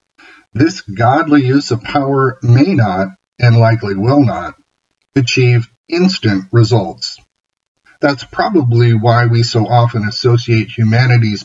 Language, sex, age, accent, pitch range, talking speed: English, male, 50-69, American, 115-145 Hz, 115 wpm